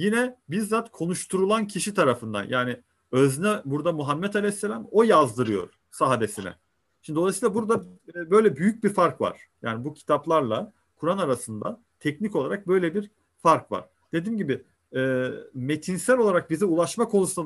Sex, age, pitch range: male, 40-59, 125-195 Hz